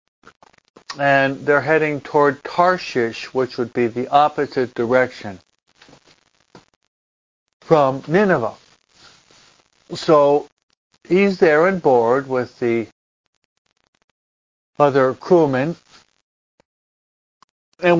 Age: 60-79